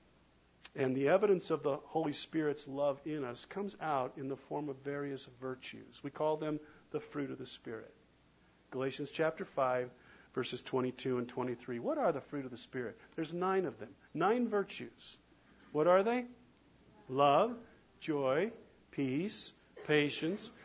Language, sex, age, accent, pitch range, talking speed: English, male, 50-69, American, 150-200 Hz, 155 wpm